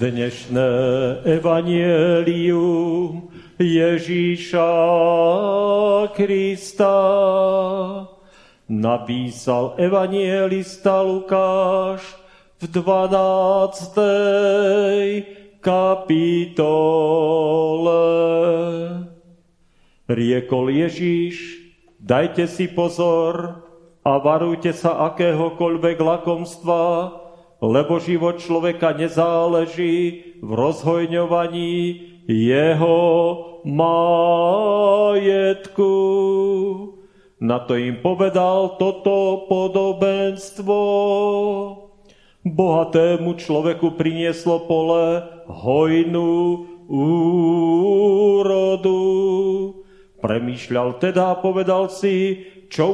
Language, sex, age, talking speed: Slovak, male, 40-59, 50 wpm